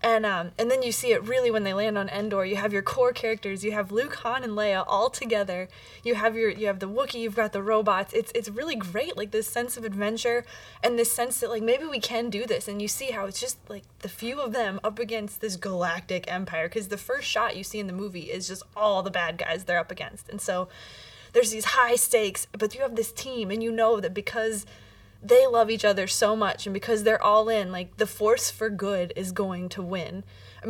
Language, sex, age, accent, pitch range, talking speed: English, female, 20-39, American, 195-230 Hz, 250 wpm